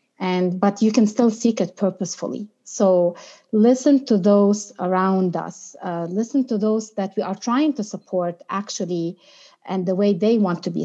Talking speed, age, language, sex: 175 wpm, 30-49, English, female